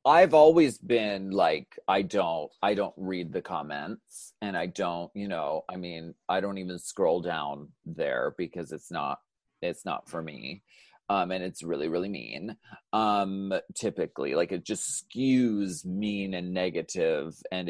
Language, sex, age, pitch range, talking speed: English, male, 30-49, 95-130 Hz, 160 wpm